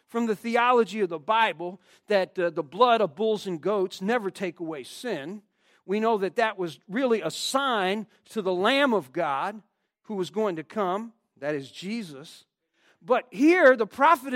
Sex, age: male, 40-59